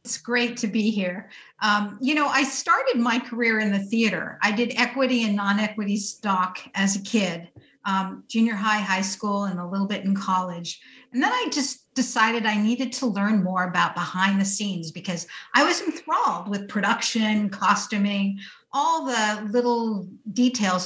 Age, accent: 50-69, American